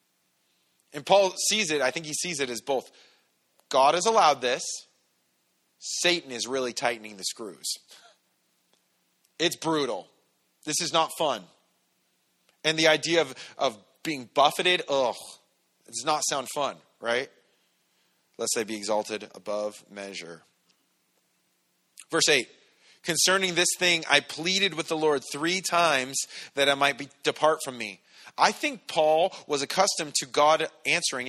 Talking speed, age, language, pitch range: 140 wpm, 30-49, English, 135-170 Hz